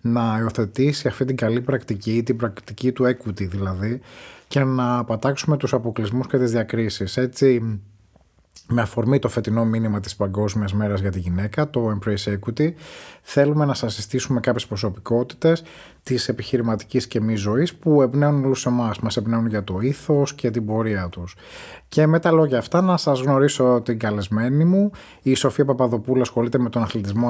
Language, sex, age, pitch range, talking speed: Greek, male, 30-49, 110-140 Hz, 170 wpm